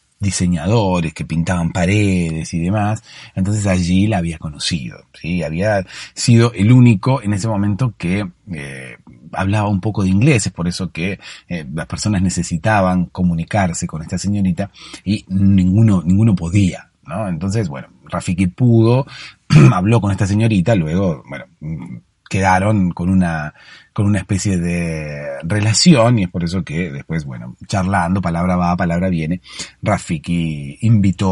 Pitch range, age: 85-105 Hz, 30-49